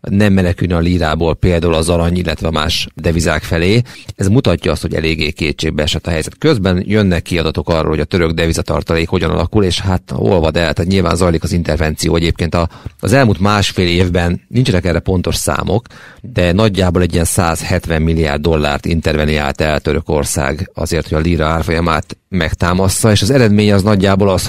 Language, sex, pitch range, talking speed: Hungarian, male, 80-95 Hz, 180 wpm